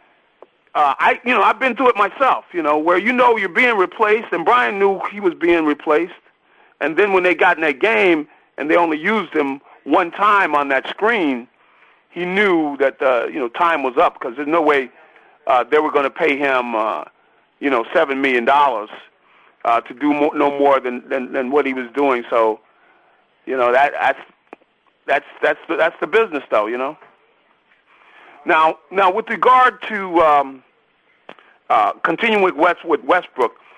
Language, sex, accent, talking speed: English, male, American, 190 wpm